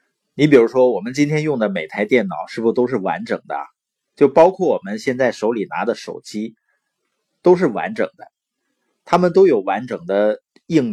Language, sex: Chinese, male